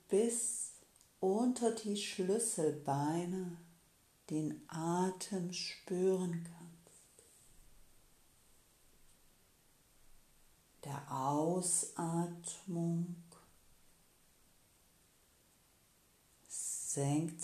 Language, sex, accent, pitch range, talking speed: German, female, German, 165-185 Hz, 40 wpm